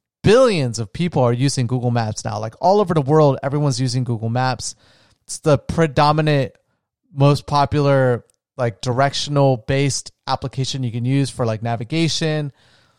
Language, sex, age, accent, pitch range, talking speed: English, male, 30-49, American, 125-160 Hz, 145 wpm